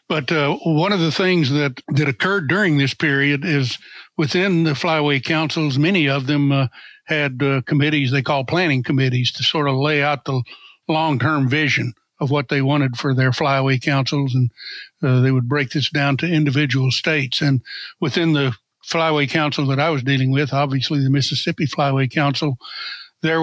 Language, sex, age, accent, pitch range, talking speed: English, male, 60-79, American, 140-160 Hz, 180 wpm